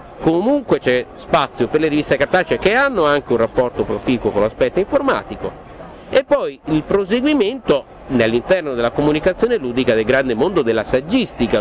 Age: 50-69